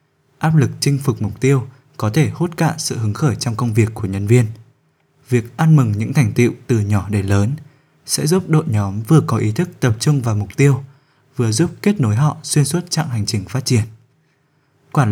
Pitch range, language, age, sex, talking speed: 110-145 Hz, Vietnamese, 20-39, male, 220 wpm